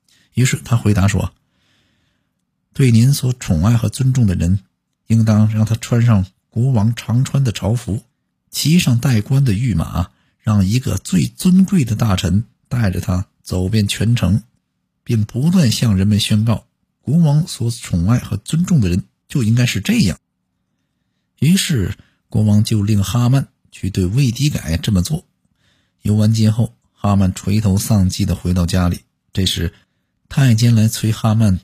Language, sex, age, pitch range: Chinese, male, 50-69, 95-125 Hz